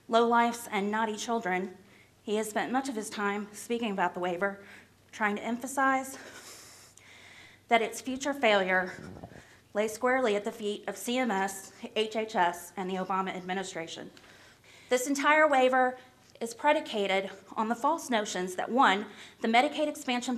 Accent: American